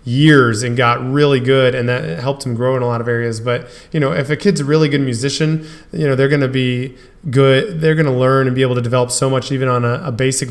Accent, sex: American, male